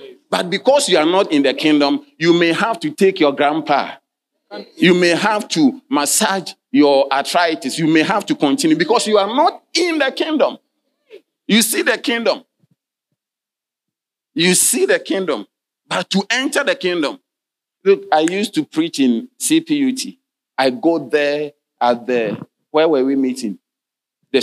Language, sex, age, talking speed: English, male, 40-59, 155 wpm